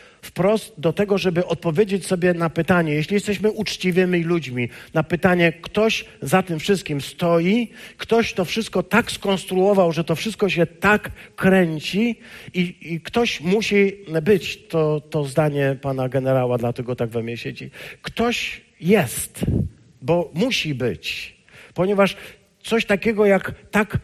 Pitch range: 145-195 Hz